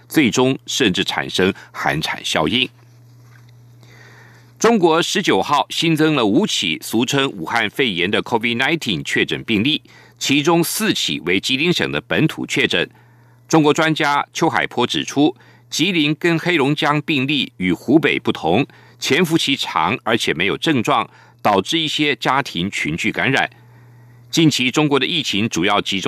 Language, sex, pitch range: German, male, 120-155 Hz